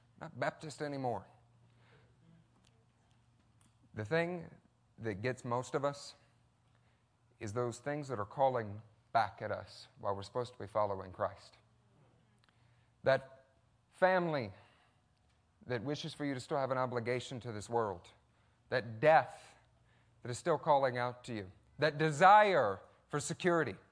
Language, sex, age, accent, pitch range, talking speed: English, male, 30-49, American, 115-150 Hz, 135 wpm